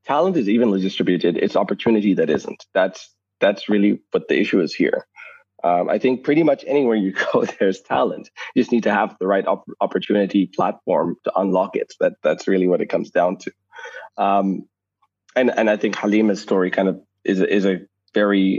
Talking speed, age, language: 195 wpm, 20-39, English